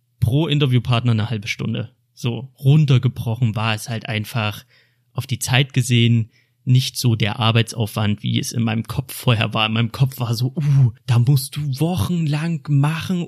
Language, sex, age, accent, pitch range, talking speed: German, male, 30-49, German, 115-135 Hz, 165 wpm